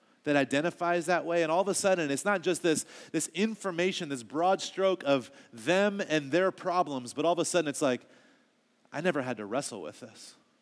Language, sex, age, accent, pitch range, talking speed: English, male, 30-49, American, 135-180 Hz, 210 wpm